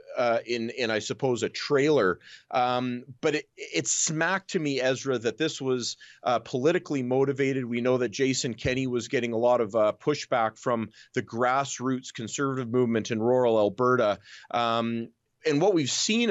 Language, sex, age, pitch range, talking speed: English, male, 30-49, 125-155 Hz, 165 wpm